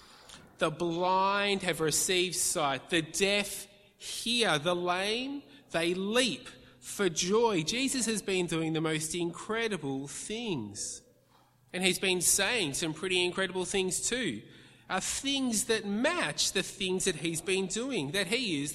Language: English